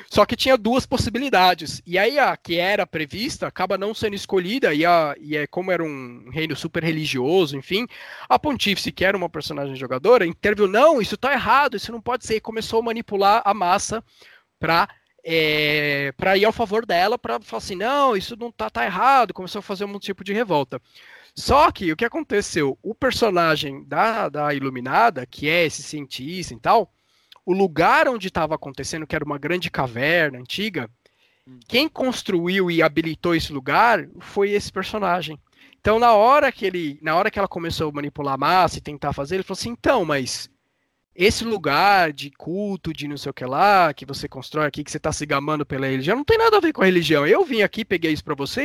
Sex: male